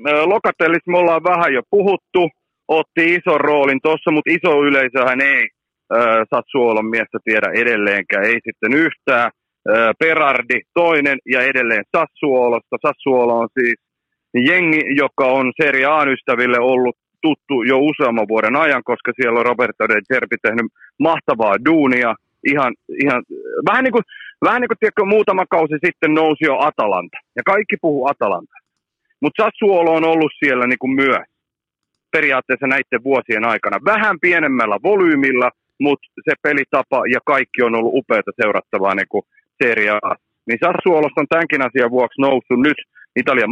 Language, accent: Finnish, native